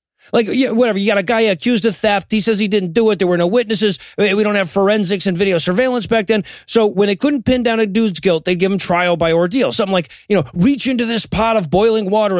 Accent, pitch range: American, 185-235 Hz